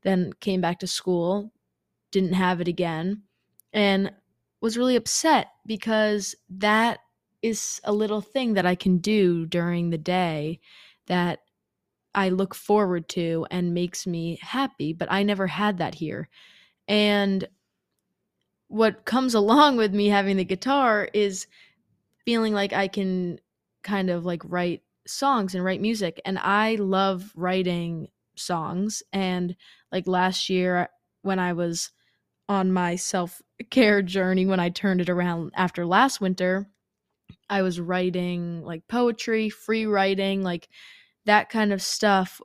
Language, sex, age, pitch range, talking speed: English, female, 20-39, 180-205 Hz, 140 wpm